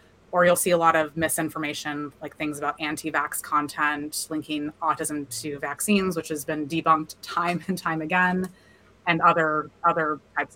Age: 20-39